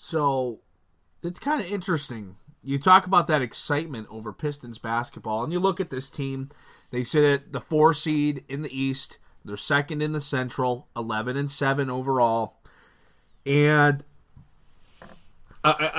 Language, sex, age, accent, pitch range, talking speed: English, male, 30-49, American, 120-155 Hz, 145 wpm